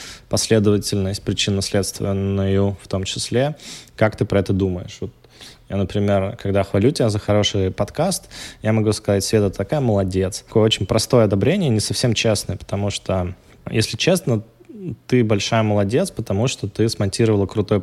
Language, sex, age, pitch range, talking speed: Russian, male, 20-39, 100-115 Hz, 150 wpm